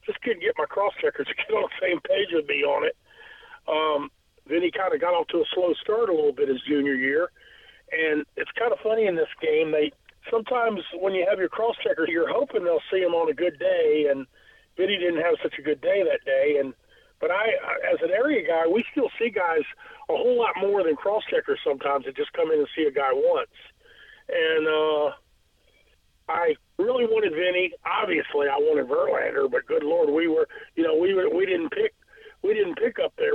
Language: English